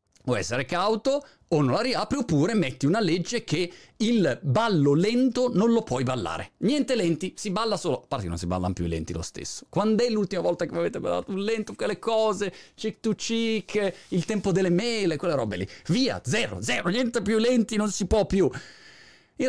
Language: Italian